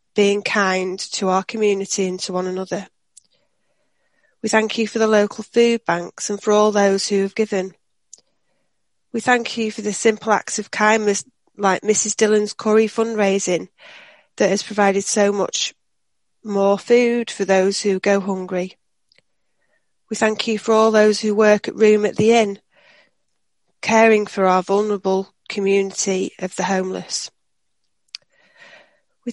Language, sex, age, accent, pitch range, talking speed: English, female, 30-49, British, 195-220 Hz, 145 wpm